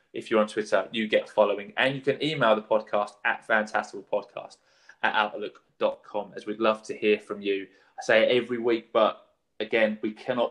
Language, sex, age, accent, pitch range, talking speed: English, male, 20-39, British, 105-115 Hz, 190 wpm